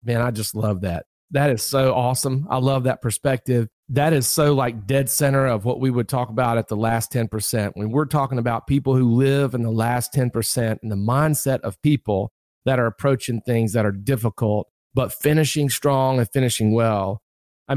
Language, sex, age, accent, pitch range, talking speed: English, male, 40-59, American, 120-150 Hz, 200 wpm